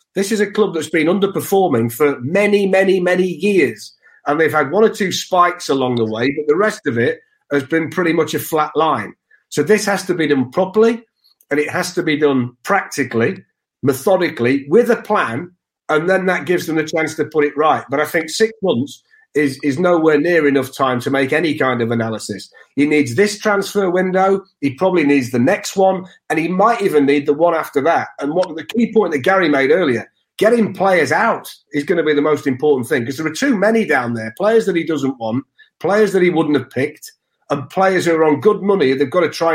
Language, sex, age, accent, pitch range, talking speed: English, male, 40-59, British, 145-195 Hz, 225 wpm